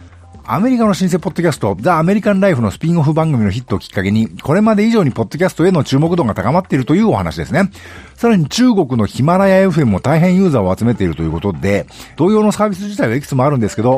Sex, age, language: male, 50-69, Japanese